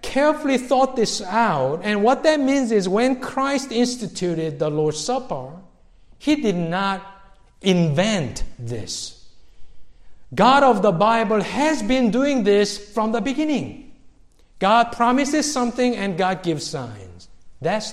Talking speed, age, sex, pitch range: 130 wpm, 50-69, male, 145-235 Hz